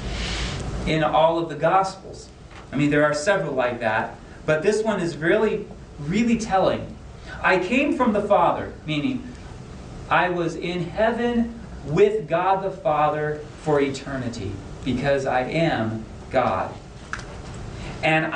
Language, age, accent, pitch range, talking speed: English, 40-59, American, 145-185 Hz, 130 wpm